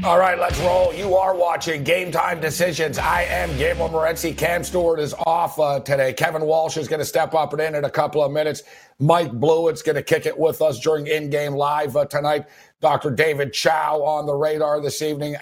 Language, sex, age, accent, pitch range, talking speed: English, male, 50-69, American, 140-165 Hz, 215 wpm